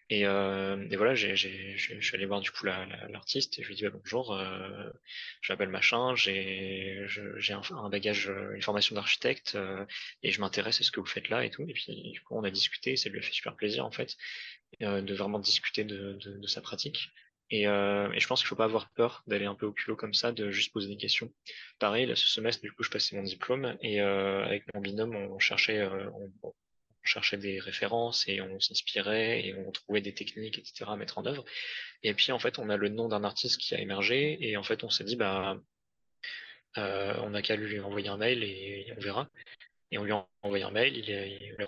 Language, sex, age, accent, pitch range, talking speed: French, male, 20-39, French, 100-110 Hz, 240 wpm